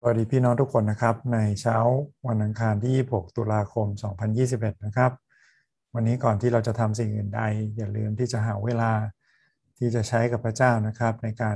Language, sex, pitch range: Thai, male, 110-125 Hz